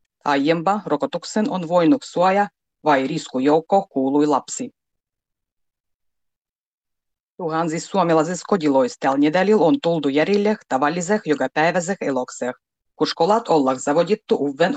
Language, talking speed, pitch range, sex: Finnish, 100 wpm, 140-180 Hz, female